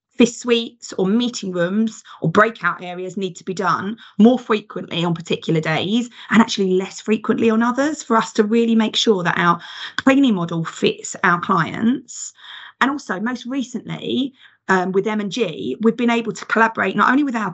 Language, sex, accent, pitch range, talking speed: English, female, British, 190-245 Hz, 180 wpm